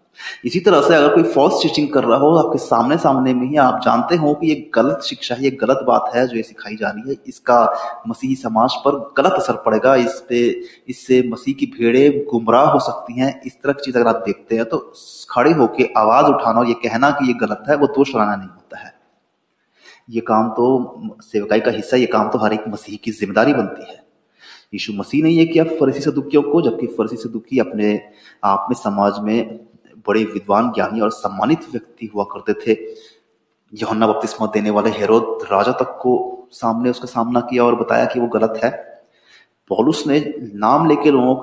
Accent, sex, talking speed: native, male, 165 wpm